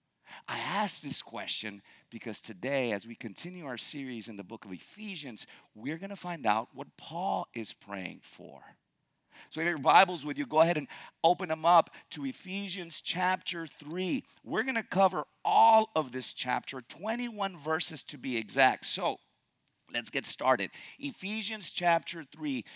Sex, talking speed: male, 165 wpm